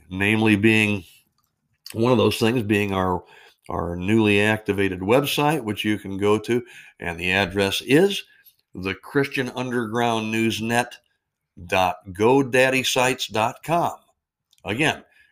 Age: 60-79